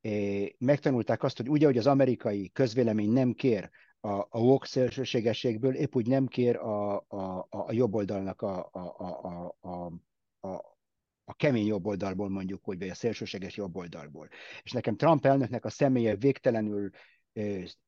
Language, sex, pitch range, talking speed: Hungarian, male, 110-140 Hz, 150 wpm